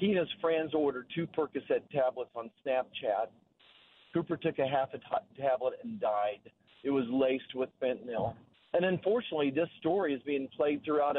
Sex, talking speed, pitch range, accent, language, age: male, 160 wpm, 140-170 Hz, American, English, 50-69